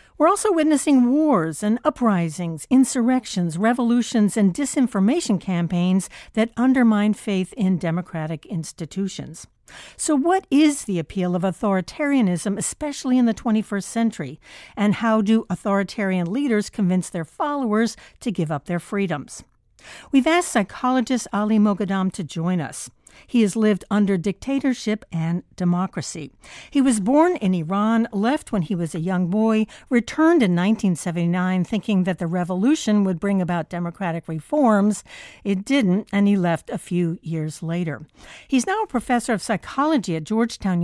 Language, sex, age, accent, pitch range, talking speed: English, female, 60-79, American, 185-240 Hz, 145 wpm